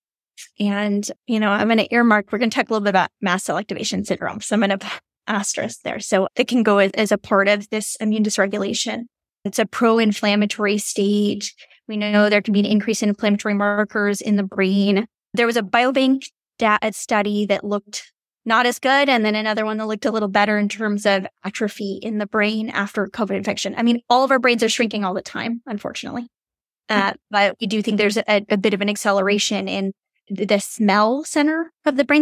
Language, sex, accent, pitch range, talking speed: English, female, American, 205-230 Hz, 210 wpm